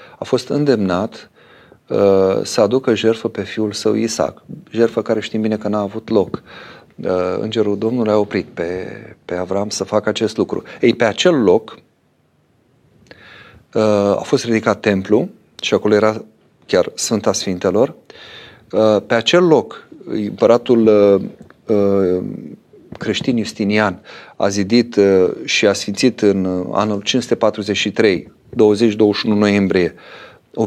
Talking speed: 135 wpm